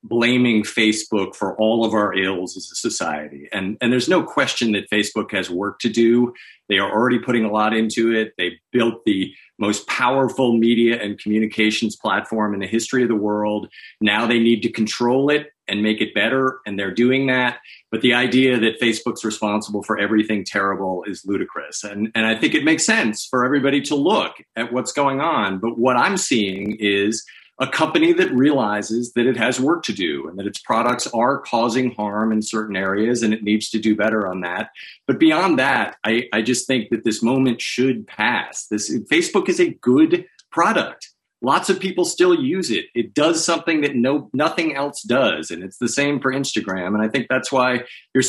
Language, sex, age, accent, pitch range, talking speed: English, male, 50-69, American, 105-130 Hz, 200 wpm